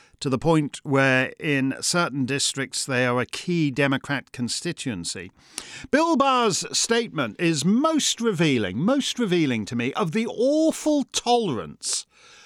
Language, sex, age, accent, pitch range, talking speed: English, male, 40-59, British, 175-270 Hz, 130 wpm